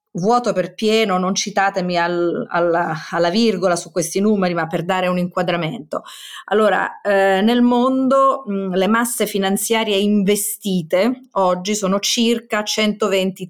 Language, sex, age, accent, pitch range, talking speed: Italian, female, 30-49, native, 175-230 Hz, 135 wpm